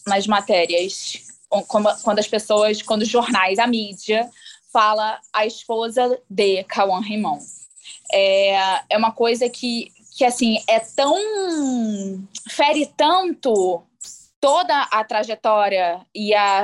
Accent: Brazilian